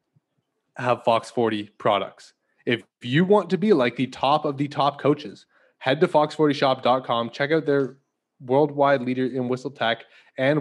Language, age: English, 20-39